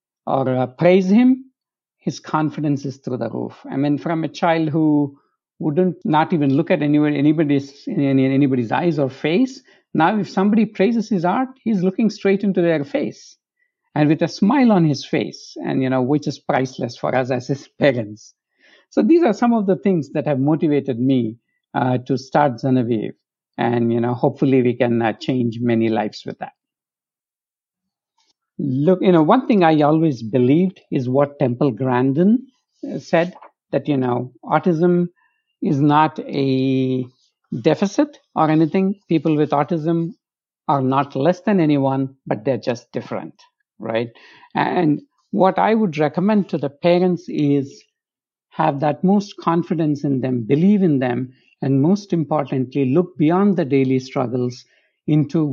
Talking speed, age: 160 wpm, 60-79